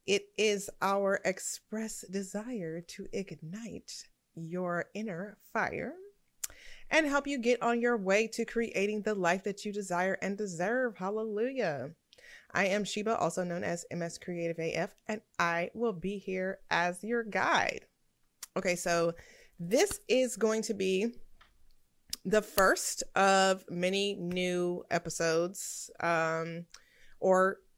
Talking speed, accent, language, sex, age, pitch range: 125 wpm, American, English, female, 20-39, 170-215 Hz